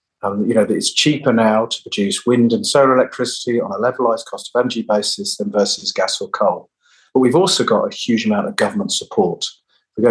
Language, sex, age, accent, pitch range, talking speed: English, male, 40-59, British, 110-135 Hz, 225 wpm